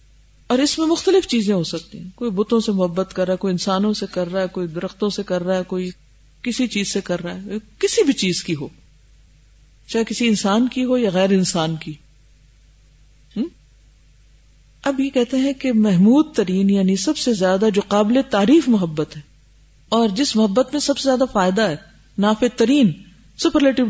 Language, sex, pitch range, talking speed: Urdu, female, 175-240 Hz, 195 wpm